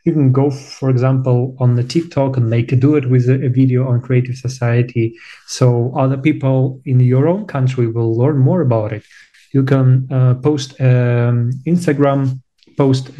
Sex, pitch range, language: male, 120-135 Hz, English